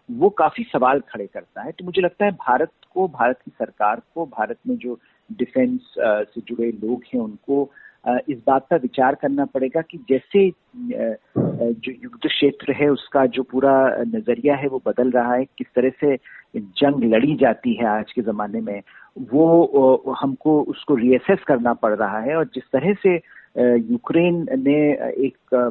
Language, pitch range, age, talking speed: Hindi, 120-175 Hz, 50-69, 170 wpm